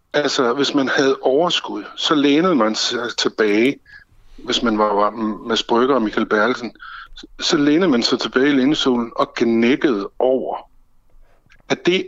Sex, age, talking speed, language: male, 60-79, 150 wpm, Danish